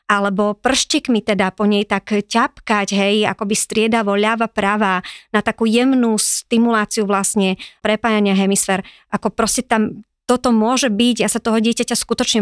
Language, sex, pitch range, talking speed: Slovak, male, 200-230 Hz, 140 wpm